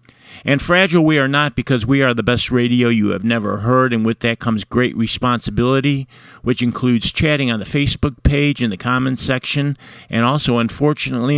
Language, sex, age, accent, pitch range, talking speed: English, male, 50-69, American, 115-130 Hz, 185 wpm